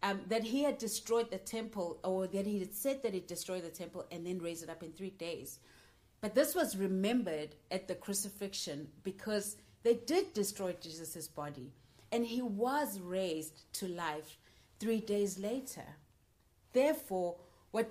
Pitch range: 180-235 Hz